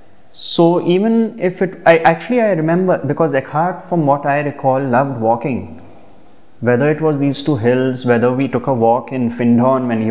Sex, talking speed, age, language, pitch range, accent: male, 180 wpm, 20-39, English, 120-175 Hz, Indian